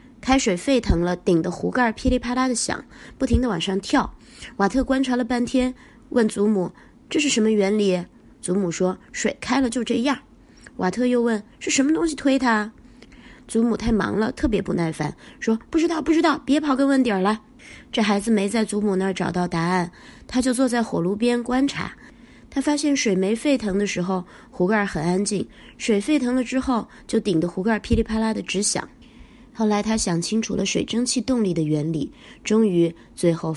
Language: Chinese